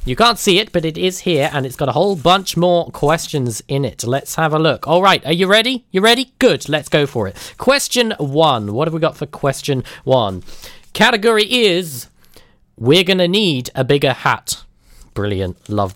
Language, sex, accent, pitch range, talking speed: English, male, British, 130-200 Hz, 205 wpm